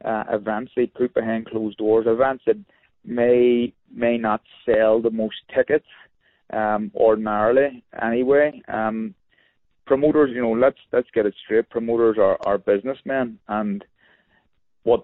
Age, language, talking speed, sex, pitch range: 30-49, English, 135 wpm, male, 105-125 Hz